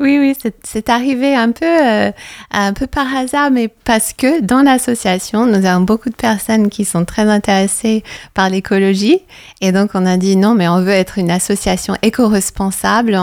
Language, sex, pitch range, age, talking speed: French, female, 185-225 Hz, 30-49, 185 wpm